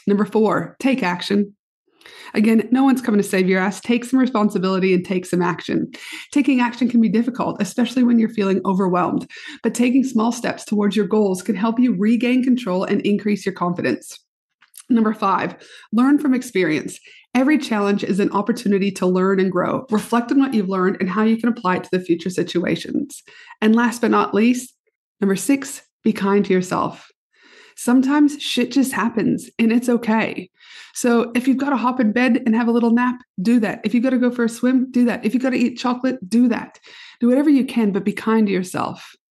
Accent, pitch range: American, 195-250 Hz